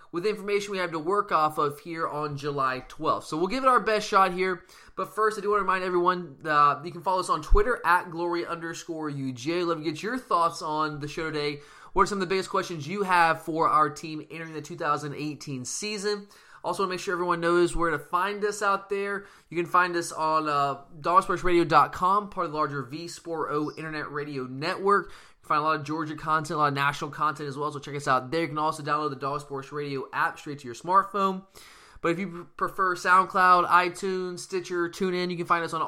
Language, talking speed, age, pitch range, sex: English, 230 wpm, 20-39, 150-190 Hz, male